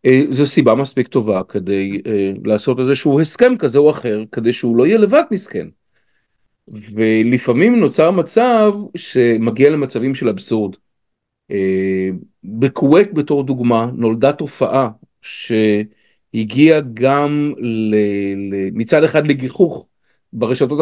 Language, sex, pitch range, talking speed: Hebrew, male, 115-160 Hz, 110 wpm